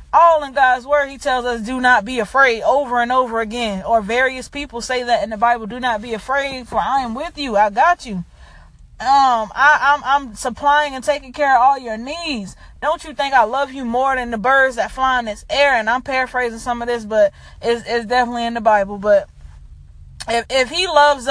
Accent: American